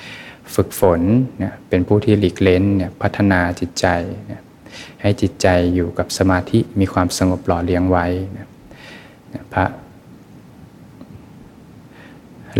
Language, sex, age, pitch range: Thai, male, 20-39, 90-100 Hz